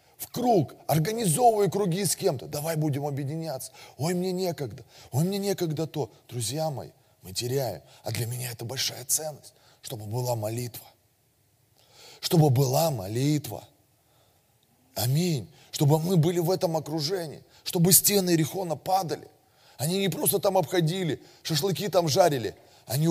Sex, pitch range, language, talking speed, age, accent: male, 120-165 Hz, Russian, 135 wpm, 20-39, native